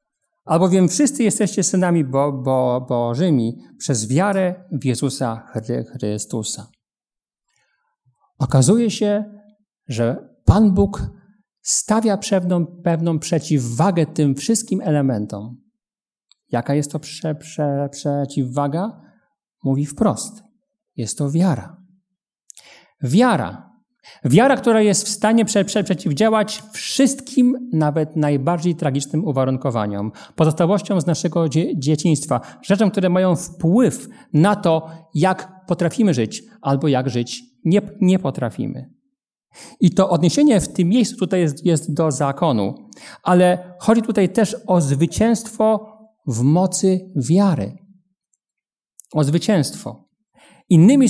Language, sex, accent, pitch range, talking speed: Polish, male, native, 145-210 Hz, 100 wpm